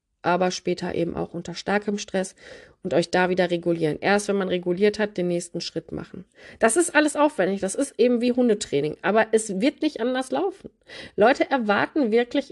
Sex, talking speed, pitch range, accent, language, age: female, 185 wpm, 185-250 Hz, German, German, 30-49